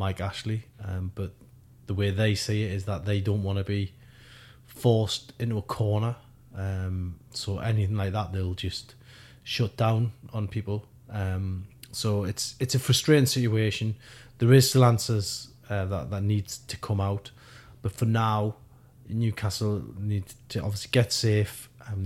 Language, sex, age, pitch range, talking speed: English, male, 30-49, 95-120 Hz, 160 wpm